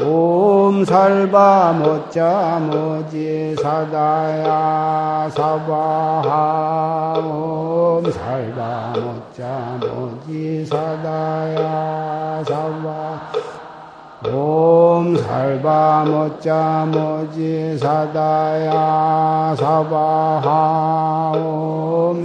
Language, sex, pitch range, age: Korean, male, 155-160 Hz, 60-79